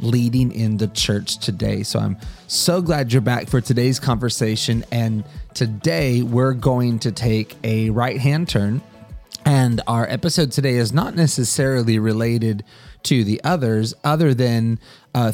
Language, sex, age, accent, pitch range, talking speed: English, male, 30-49, American, 110-130 Hz, 145 wpm